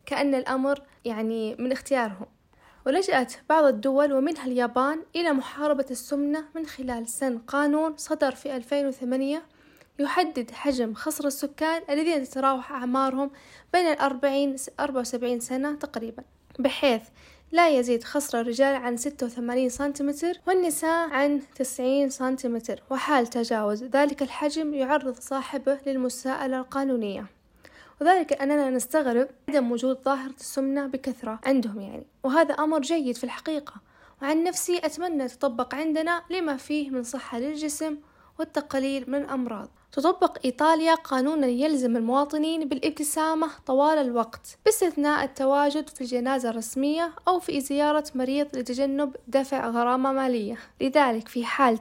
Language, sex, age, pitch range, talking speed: Arabic, female, 10-29, 255-300 Hz, 120 wpm